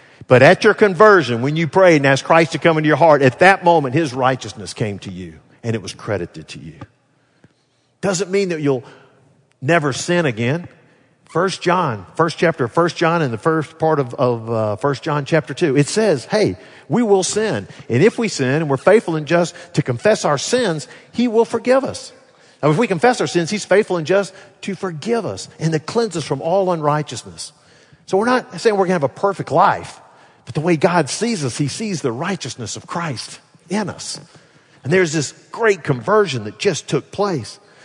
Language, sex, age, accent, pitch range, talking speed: English, male, 50-69, American, 130-185 Hz, 210 wpm